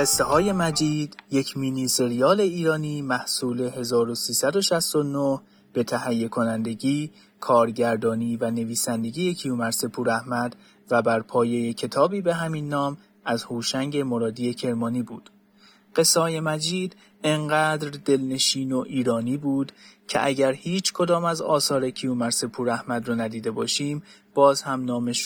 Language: Persian